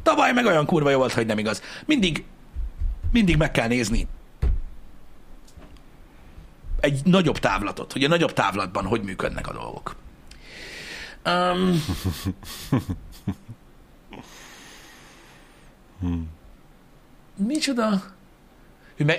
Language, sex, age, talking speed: Hungarian, male, 60-79, 80 wpm